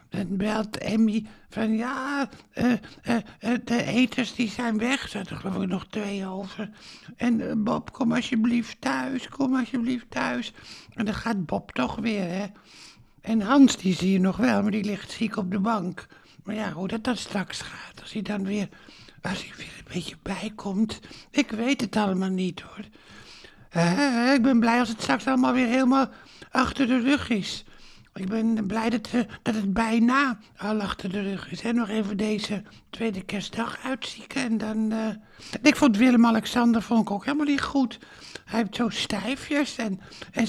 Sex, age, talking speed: male, 60-79, 190 wpm